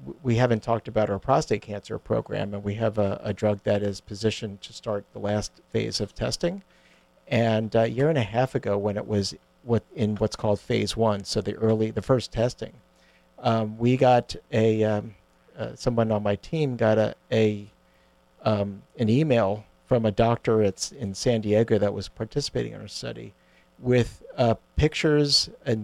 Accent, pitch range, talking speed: American, 100-120 Hz, 185 wpm